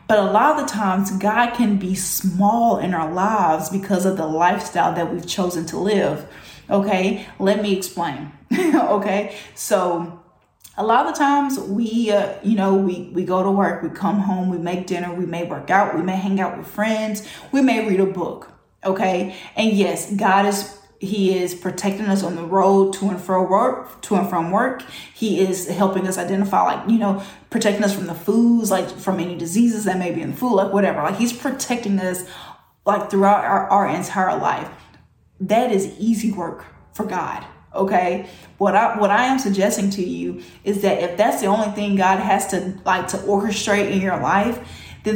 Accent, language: American, English